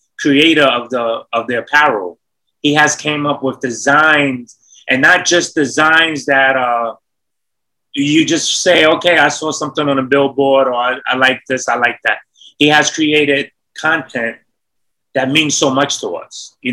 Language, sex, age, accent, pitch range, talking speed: English, male, 20-39, American, 120-145 Hz, 170 wpm